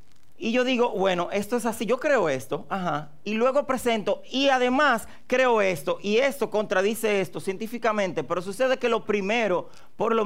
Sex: male